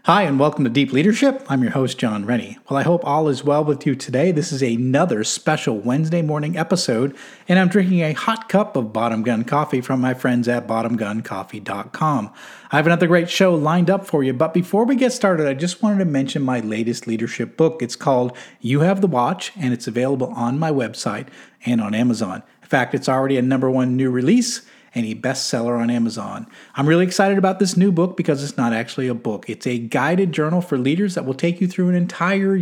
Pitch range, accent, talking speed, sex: 125-175 Hz, American, 220 wpm, male